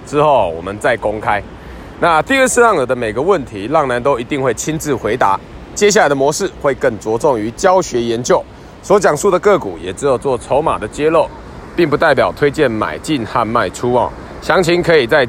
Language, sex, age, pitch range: Chinese, male, 20-39, 120-170 Hz